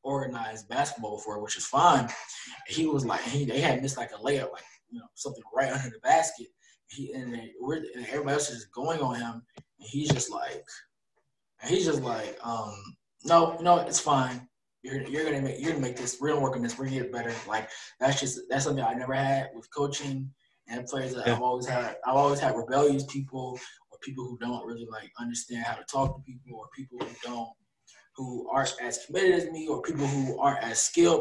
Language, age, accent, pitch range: English, 20-39, American, 120-145 Hz